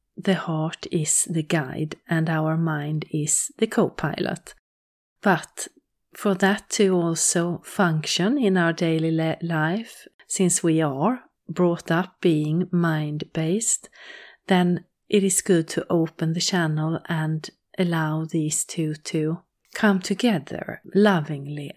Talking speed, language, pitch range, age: 120 wpm, English, 155-195 Hz, 30-49